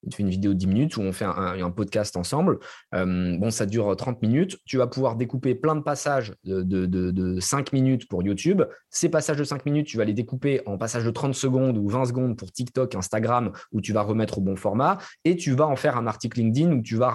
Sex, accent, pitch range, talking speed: male, French, 105-135 Hz, 255 wpm